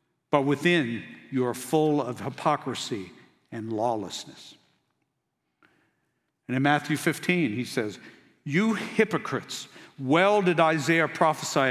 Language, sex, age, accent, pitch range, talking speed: English, male, 60-79, American, 135-165 Hz, 110 wpm